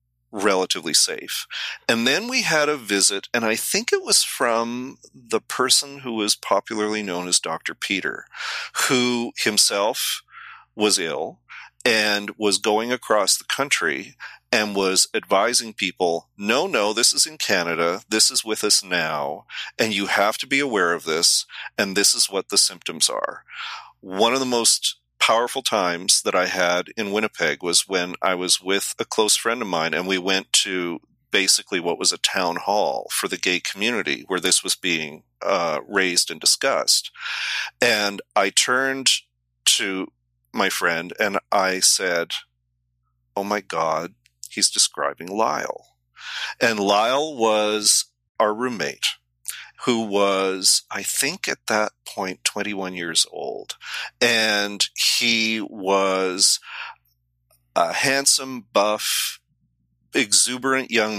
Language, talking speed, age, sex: English, 140 wpm, 40-59, male